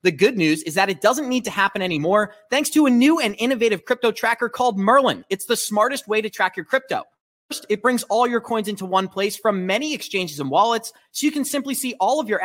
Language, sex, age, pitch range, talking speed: English, male, 30-49, 180-230 Hz, 245 wpm